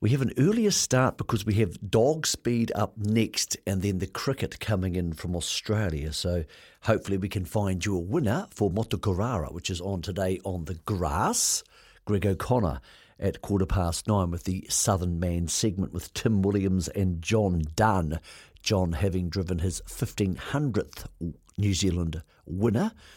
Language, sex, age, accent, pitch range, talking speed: English, male, 50-69, British, 90-105 Hz, 160 wpm